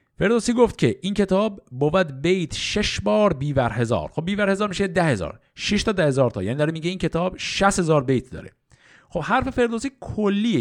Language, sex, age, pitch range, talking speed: Persian, male, 50-69, 125-195 Hz, 200 wpm